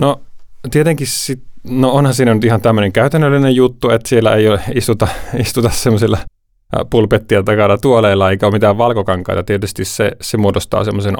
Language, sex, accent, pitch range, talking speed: Finnish, male, native, 95-120 Hz, 160 wpm